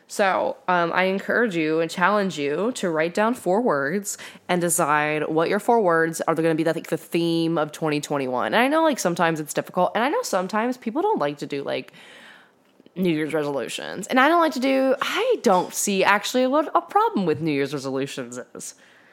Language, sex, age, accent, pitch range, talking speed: English, female, 10-29, American, 155-255 Hz, 210 wpm